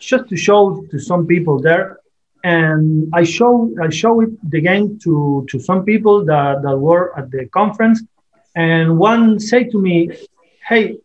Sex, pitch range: male, 155-205 Hz